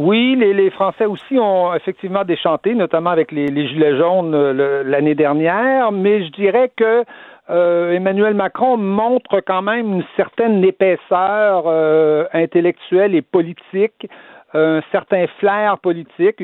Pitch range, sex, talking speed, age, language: 150-190 Hz, male, 145 wpm, 60-79, French